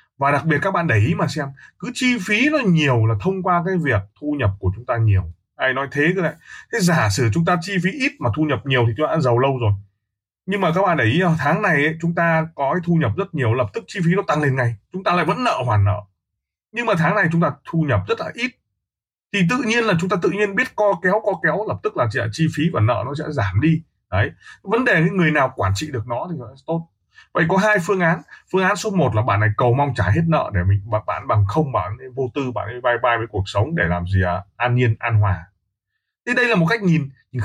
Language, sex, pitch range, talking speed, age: Vietnamese, male, 110-165 Hz, 275 wpm, 20-39